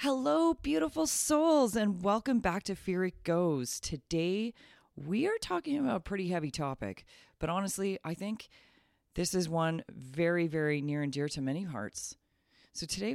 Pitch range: 125-175 Hz